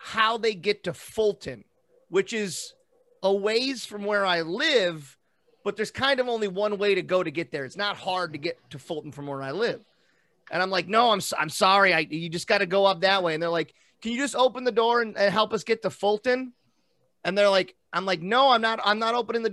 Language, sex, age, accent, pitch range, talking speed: English, male, 30-49, American, 165-230 Hz, 245 wpm